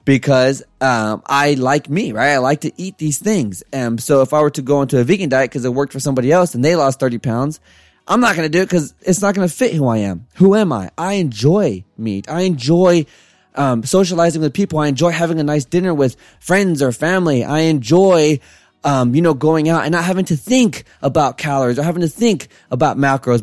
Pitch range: 130-180 Hz